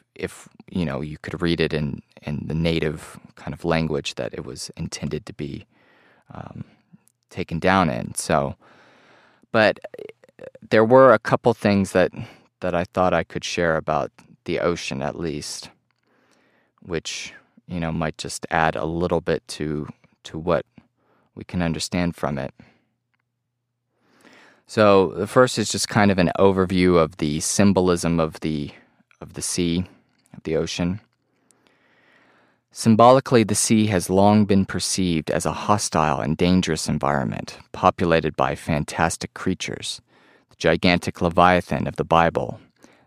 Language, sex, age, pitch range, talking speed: English, male, 30-49, 80-100 Hz, 140 wpm